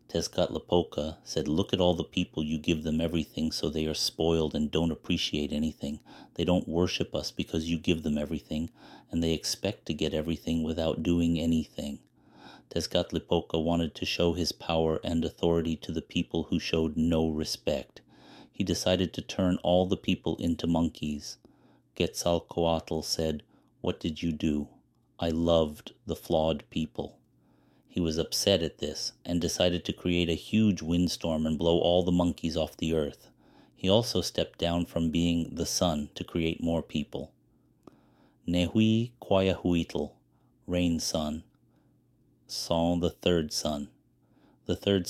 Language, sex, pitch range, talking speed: English, male, 80-90 Hz, 150 wpm